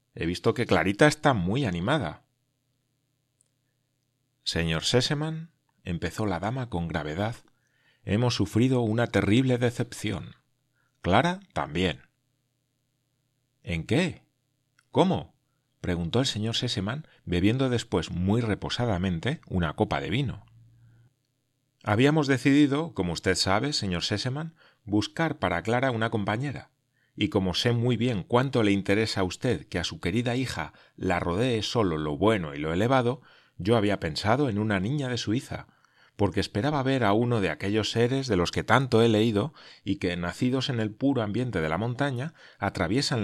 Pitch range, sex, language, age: 100-130 Hz, male, Spanish, 40-59